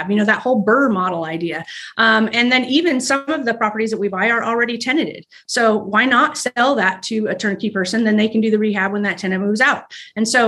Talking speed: 245 wpm